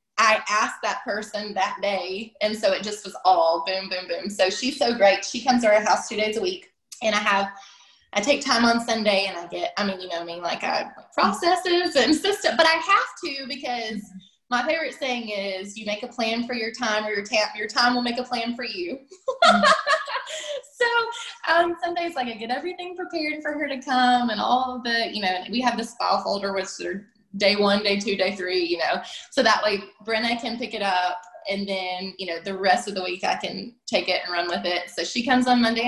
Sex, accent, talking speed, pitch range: female, American, 235 wpm, 190-250 Hz